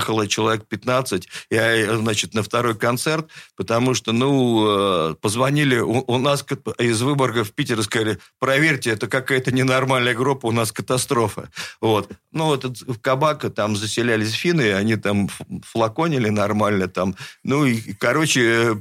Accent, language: native, Russian